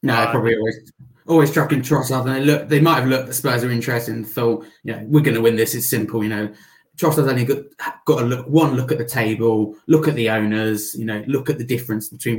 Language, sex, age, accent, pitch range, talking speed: English, male, 20-39, British, 130-160 Hz, 240 wpm